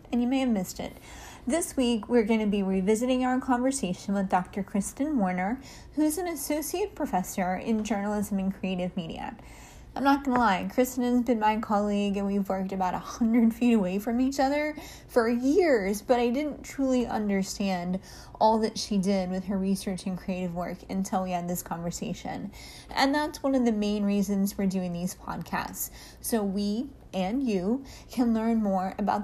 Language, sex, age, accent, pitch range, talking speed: English, female, 20-39, American, 190-245 Hz, 185 wpm